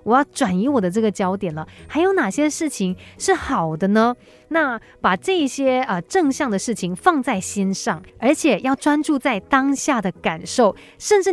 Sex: female